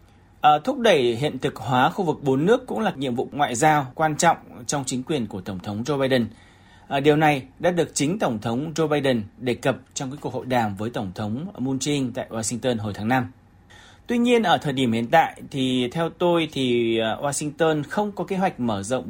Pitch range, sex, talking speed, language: 120-155 Hz, male, 225 wpm, Vietnamese